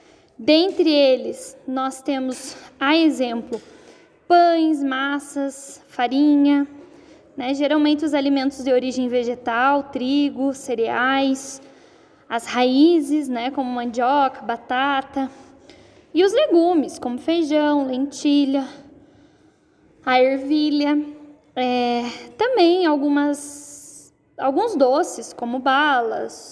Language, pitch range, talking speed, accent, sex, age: Portuguese, 265-320 Hz, 85 wpm, Brazilian, female, 10-29